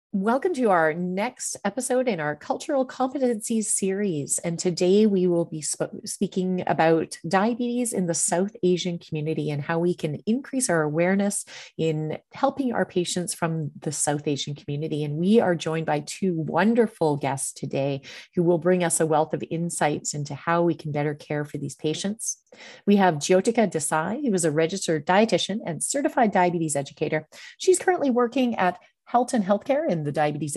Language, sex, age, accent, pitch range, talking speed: English, female, 30-49, American, 160-215 Hz, 175 wpm